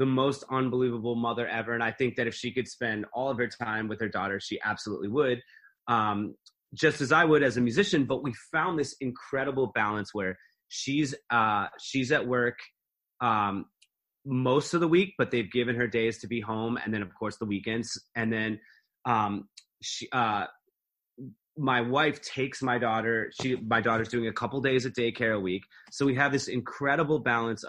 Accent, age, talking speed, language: American, 30-49, 195 wpm, English